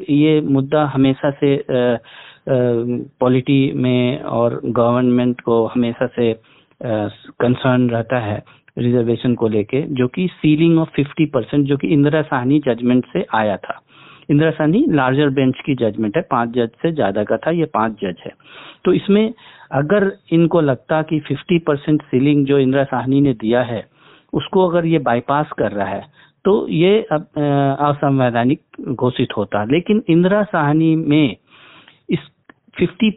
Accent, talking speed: native, 145 wpm